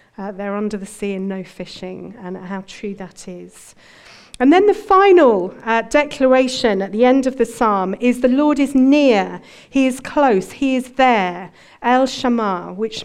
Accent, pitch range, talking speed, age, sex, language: British, 195-265 Hz, 180 wpm, 40-59, female, English